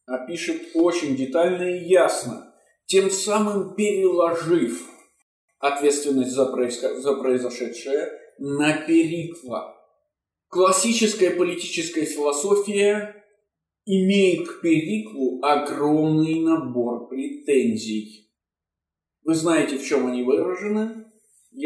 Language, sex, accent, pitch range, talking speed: Russian, male, native, 140-230 Hz, 80 wpm